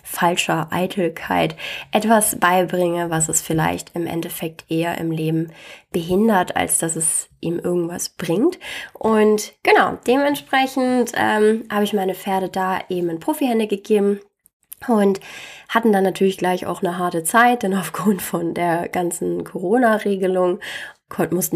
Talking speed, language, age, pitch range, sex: 135 wpm, German, 20-39, 170-200 Hz, female